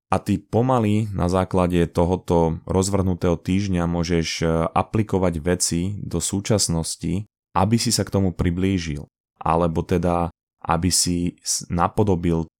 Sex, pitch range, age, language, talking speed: male, 85-95 Hz, 20-39, Slovak, 115 wpm